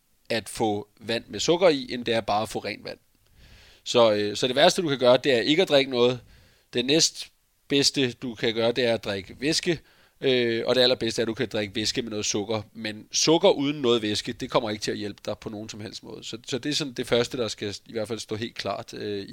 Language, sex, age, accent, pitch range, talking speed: Danish, male, 30-49, native, 110-135 Hz, 265 wpm